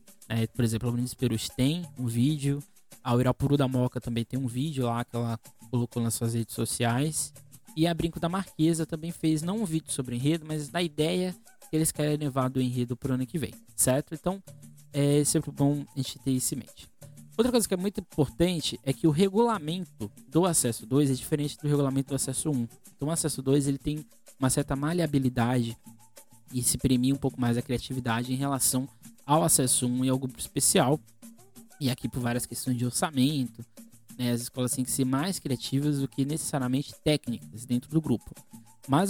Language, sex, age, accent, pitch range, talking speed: Portuguese, male, 20-39, Brazilian, 125-155 Hz, 205 wpm